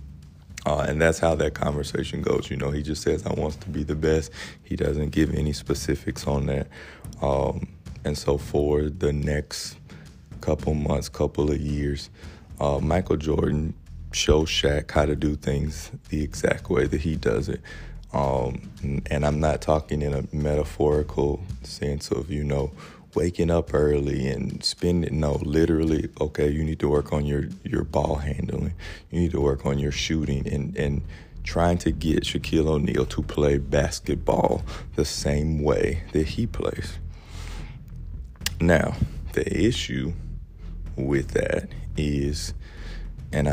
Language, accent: English, American